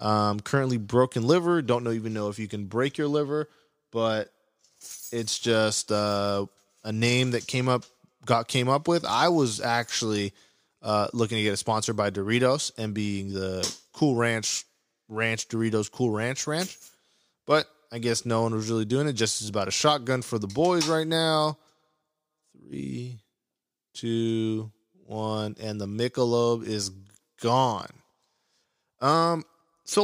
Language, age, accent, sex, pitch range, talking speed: English, 20-39, American, male, 105-130 Hz, 155 wpm